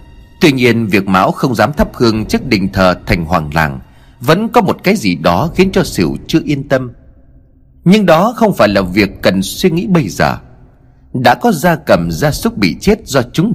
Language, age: Vietnamese, 30-49